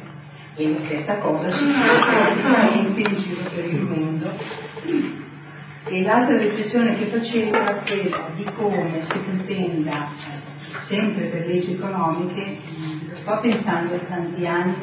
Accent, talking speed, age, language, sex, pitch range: native, 120 wpm, 40-59, Italian, male, 160-195 Hz